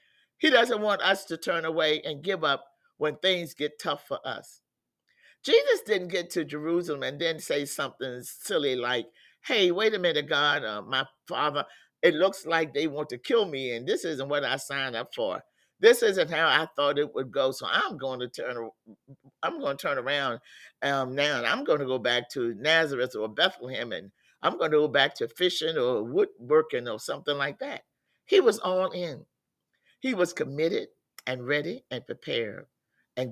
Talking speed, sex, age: 195 wpm, male, 50-69